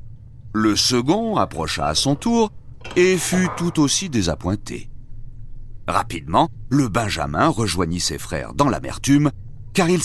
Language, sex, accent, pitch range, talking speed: French, male, French, 90-145 Hz, 125 wpm